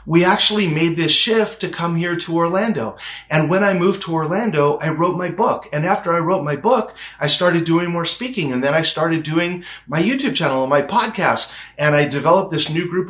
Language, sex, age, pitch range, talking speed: English, male, 40-59, 140-190 Hz, 220 wpm